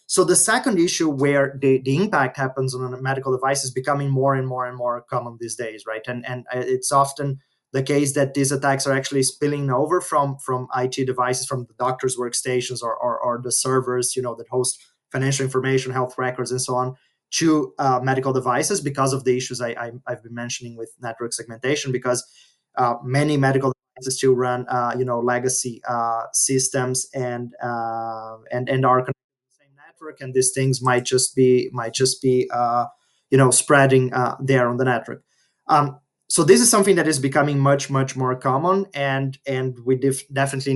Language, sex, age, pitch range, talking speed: English, male, 20-39, 125-140 Hz, 195 wpm